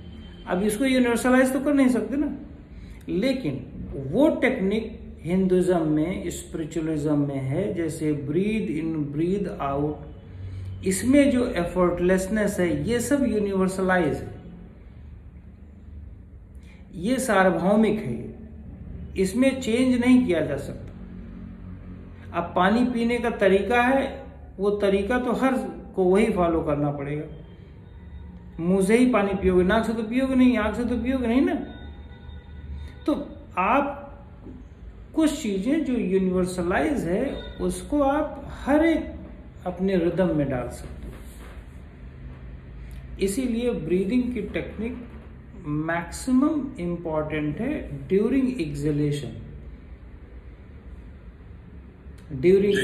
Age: 50-69